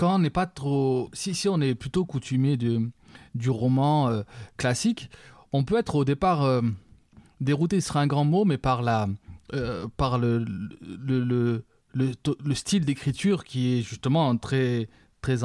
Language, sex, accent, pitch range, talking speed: French, male, French, 125-160 Hz, 175 wpm